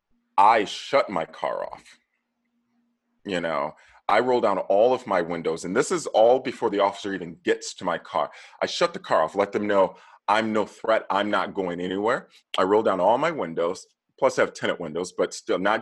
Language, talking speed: English, 210 wpm